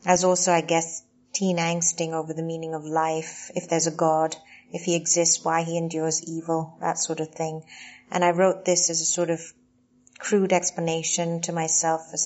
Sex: female